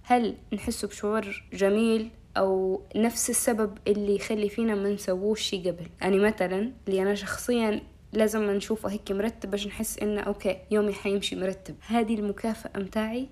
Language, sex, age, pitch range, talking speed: Arabic, female, 20-39, 195-235 Hz, 155 wpm